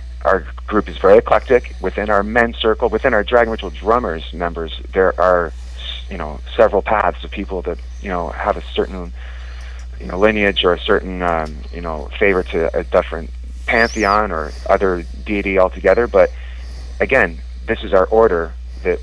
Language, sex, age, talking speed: English, male, 30-49, 170 wpm